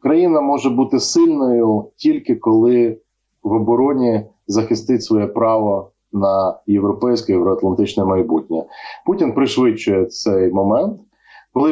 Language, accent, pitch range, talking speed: Ukrainian, native, 110-150 Hz, 100 wpm